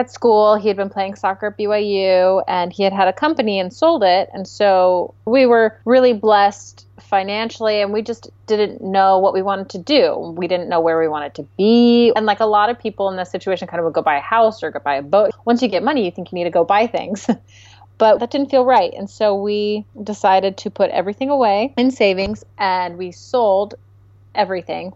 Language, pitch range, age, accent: English, 175-210 Hz, 30-49, American